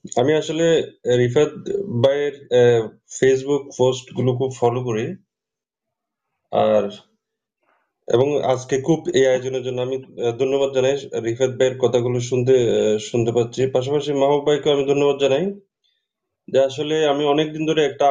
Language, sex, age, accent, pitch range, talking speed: Bengali, male, 30-49, native, 125-155 Hz, 40 wpm